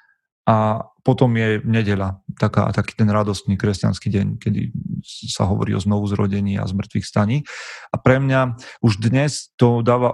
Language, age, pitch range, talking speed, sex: Slovak, 30-49, 105-120 Hz, 150 wpm, male